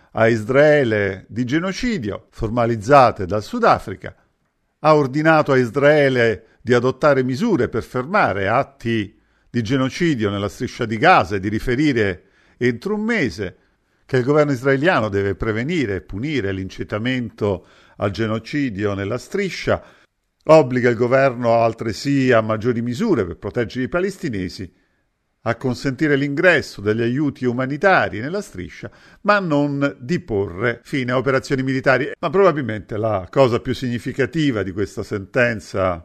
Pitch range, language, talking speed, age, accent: 110-140 Hz, Italian, 130 wpm, 50-69, native